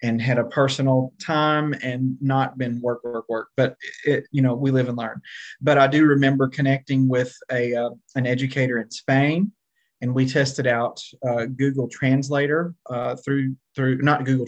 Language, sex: English, male